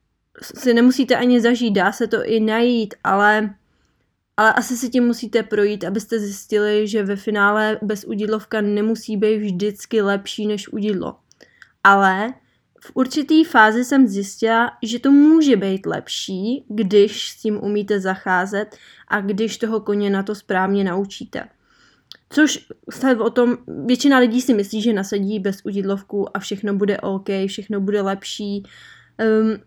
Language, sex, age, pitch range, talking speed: Czech, female, 20-39, 205-235 Hz, 150 wpm